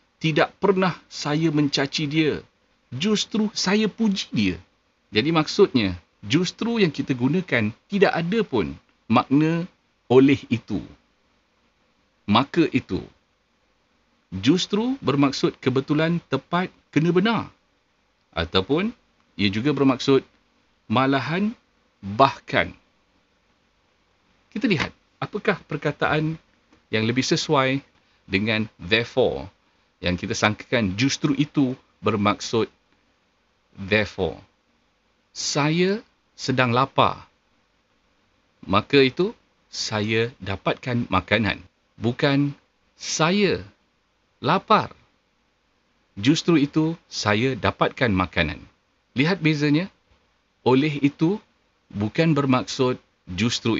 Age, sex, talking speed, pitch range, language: 50-69, male, 85 wpm, 105-165 Hz, Malay